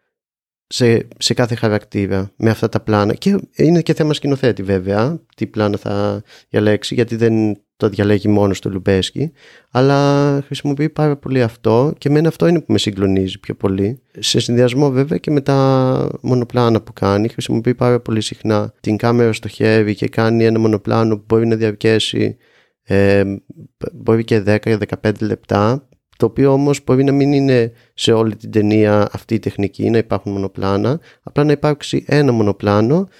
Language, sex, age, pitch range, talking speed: Greek, male, 30-49, 110-145 Hz, 165 wpm